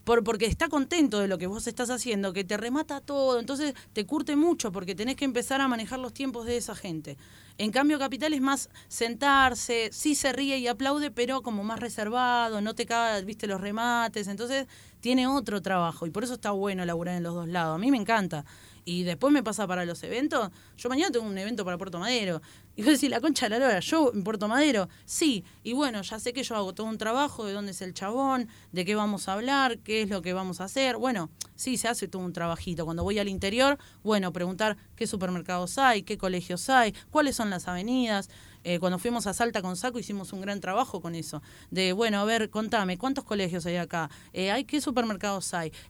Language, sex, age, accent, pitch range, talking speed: Spanish, female, 20-39, Argentinian, 185-250 Hz, 225 wpm